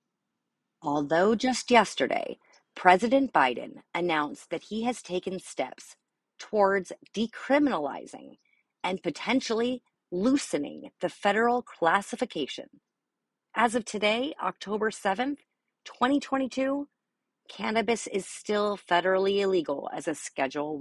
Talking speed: 95 wpm